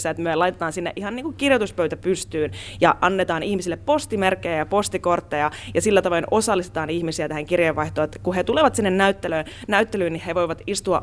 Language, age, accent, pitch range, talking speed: Finnish, 20-39, native, 150-190 Hz, 180 wpm